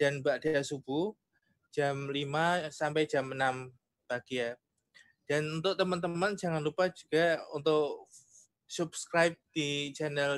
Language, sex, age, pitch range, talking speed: Indonesian, male, 20-39, 135-155 Hz, 115 wpm